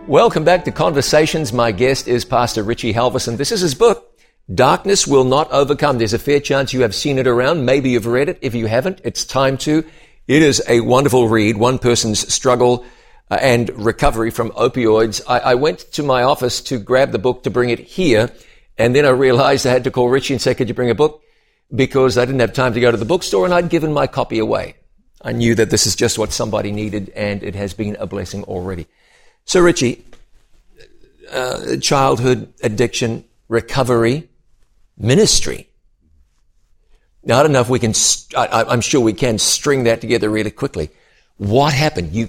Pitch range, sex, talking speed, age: 110-135 Hz, male, 195 wpm, 50-69